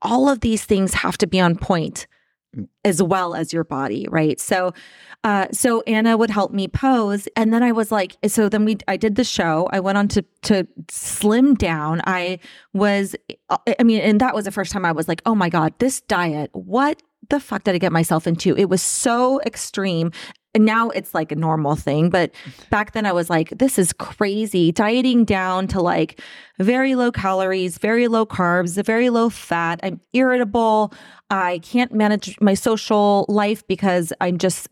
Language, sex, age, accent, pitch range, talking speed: English, female, 30-49, American, 180-225 Hz, 195 wpm